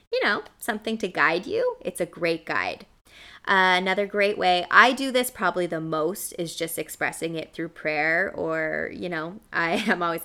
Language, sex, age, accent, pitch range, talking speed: English, female, 20-39, American, 170-215 Hz, 185 wpm